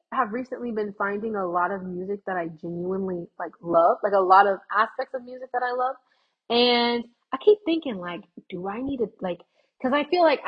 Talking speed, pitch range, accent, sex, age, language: 220 wpm, 180-220 Hz, American, female, 20-39, English